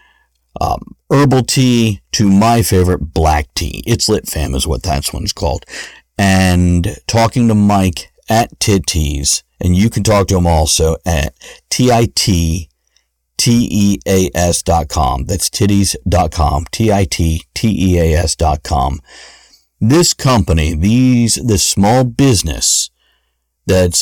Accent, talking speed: American, 100 wpm